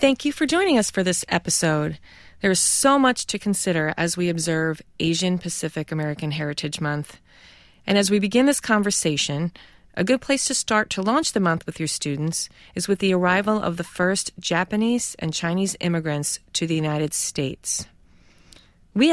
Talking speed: 175 wpm